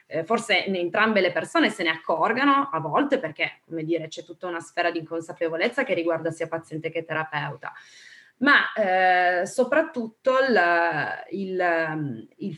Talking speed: 150 wpm